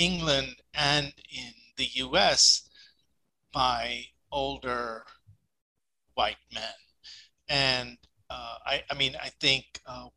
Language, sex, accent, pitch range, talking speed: English, male, American, 125-160 Hz, 100 wpm